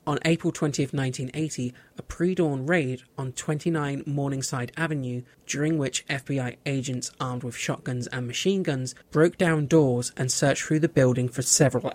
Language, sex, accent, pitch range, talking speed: English, male, British, 130-160 Hz, 155 wpm